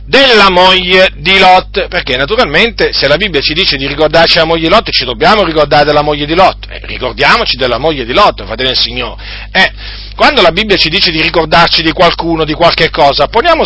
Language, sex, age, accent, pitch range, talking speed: Italian, male, 40-59, native, 135-205 Hz, 200 wpm